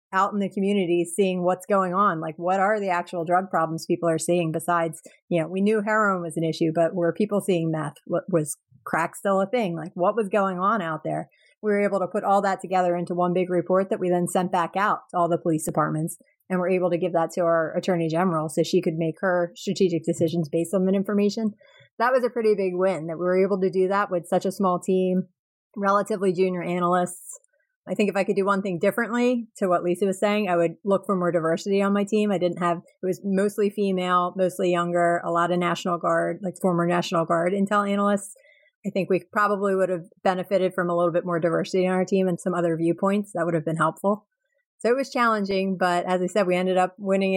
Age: 30-49